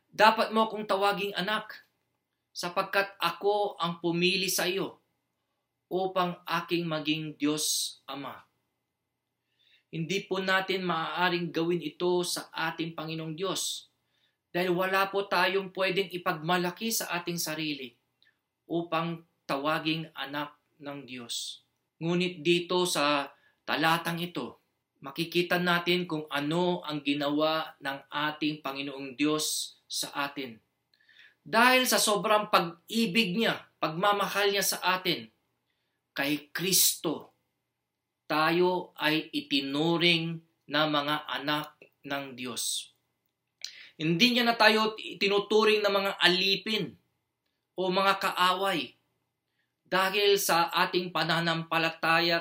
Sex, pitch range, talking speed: male, 150-190 Hz, 105 wpm